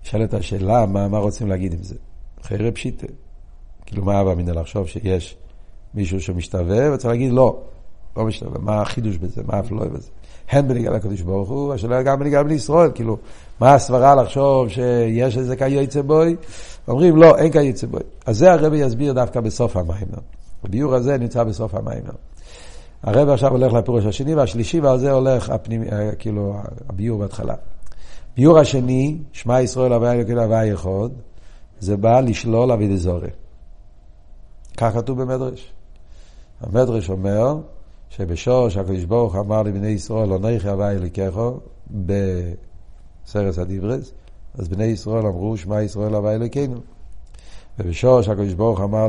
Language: Hebrew